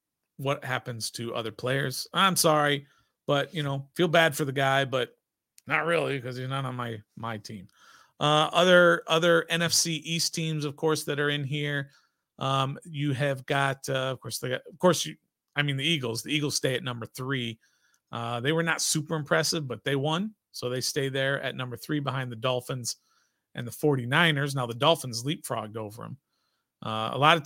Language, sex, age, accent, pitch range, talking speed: English, male, 40-59, American, 125-155 Hz, 200 wpm